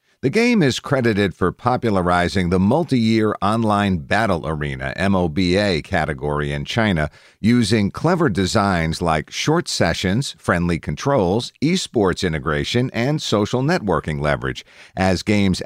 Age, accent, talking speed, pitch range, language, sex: 50-69, American, 120 wpm, 85-115 Hz, English, male